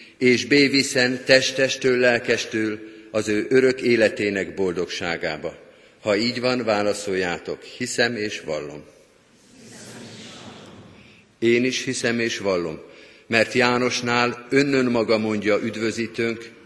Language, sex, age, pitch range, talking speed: Hungarian, male, 50-69, 110-130 Hz, 105 wpm